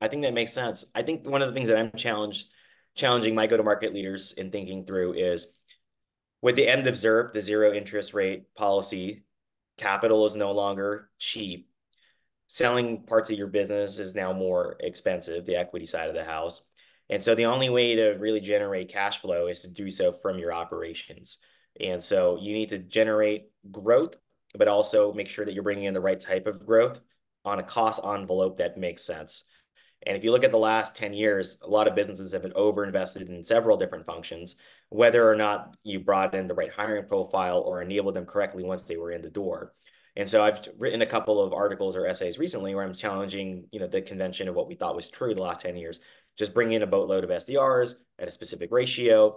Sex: male